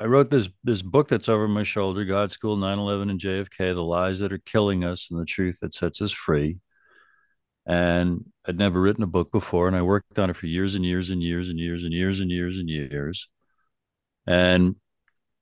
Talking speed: 210 wpm